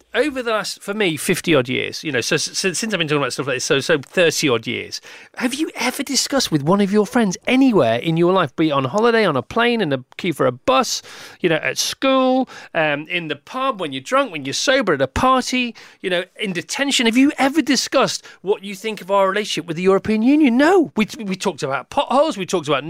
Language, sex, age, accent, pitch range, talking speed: English, male, 40-59, British, 180-285 Hz, 245 wpm